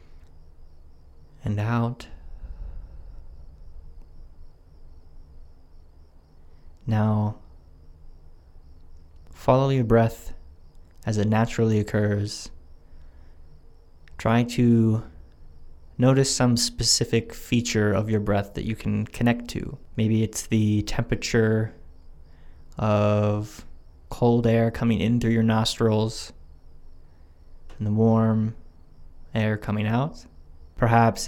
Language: English